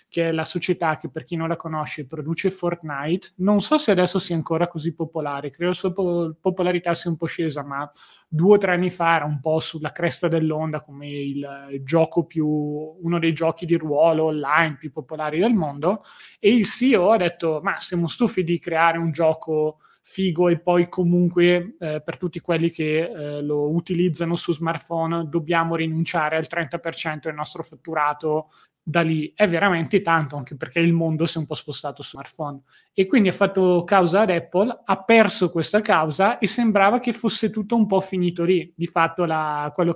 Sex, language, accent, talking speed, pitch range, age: male, Italian, native, 190 wpm, 155-180 Hz, 20-39